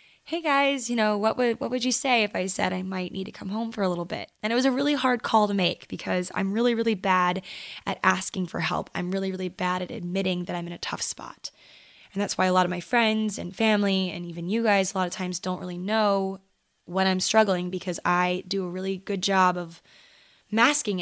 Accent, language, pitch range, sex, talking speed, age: American, English, 180-220 Hz, female, 245 wpm, 10-29